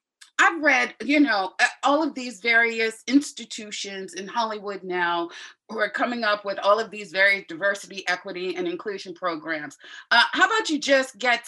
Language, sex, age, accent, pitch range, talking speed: English, female, 30-49, American, 210-300 Hz, 165 wpm